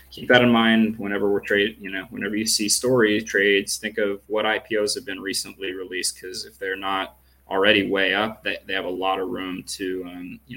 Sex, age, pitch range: male, 20-39, 100-115 Hz